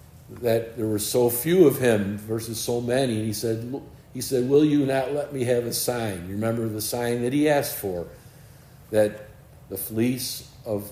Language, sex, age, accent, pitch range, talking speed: English, male, 50-69, American, 115-140 Hz, 185 wpm